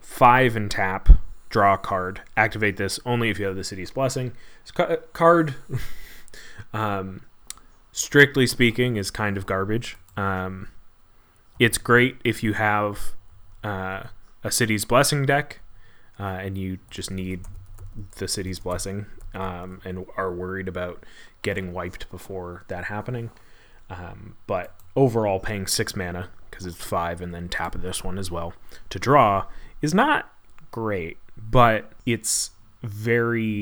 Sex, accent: male, American